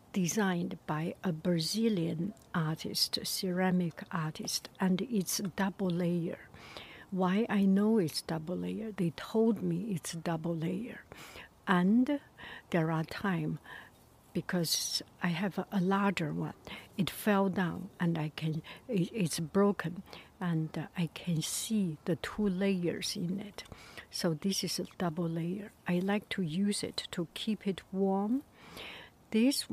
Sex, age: female, 60-79